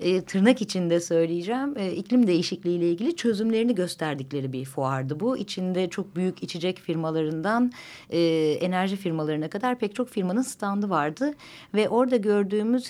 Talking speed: 145 wpm